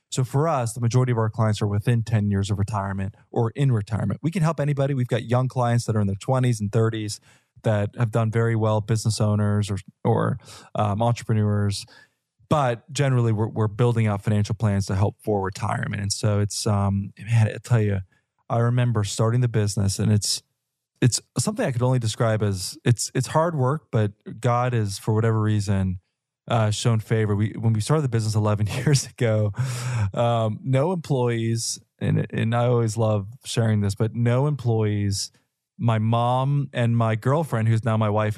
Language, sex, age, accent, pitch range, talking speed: English, male, 20-39, American, 105-125 Hz, 190 wpm